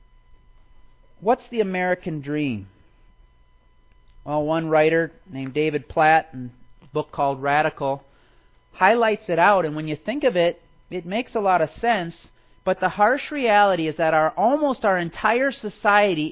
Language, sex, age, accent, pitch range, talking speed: English, male, 40-59, American, 145-215 Hz, 150 wpm